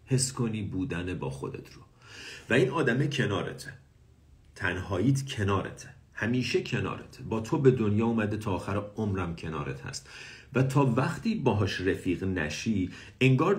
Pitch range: 85-125 Hz